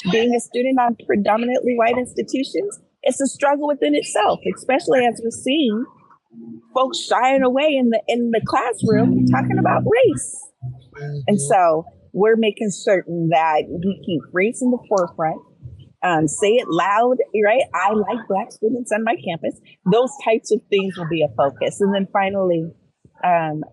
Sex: female